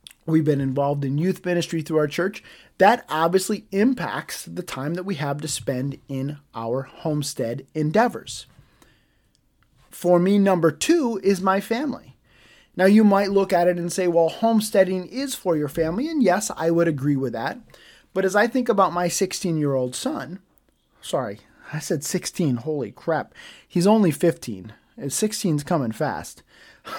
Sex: male